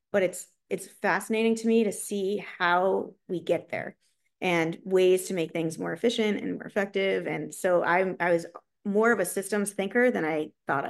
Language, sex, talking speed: English, female, 195 wpm